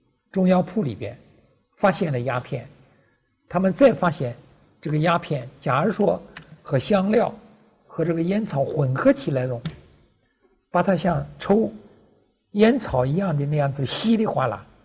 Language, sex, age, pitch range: Chinese, male, 60-79, 135-185 Hz